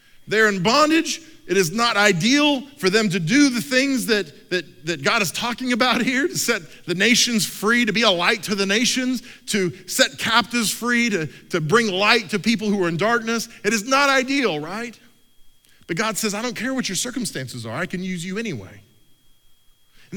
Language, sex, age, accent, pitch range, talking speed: English, male, 40-59, American, 165-235 Hz, 200 wpm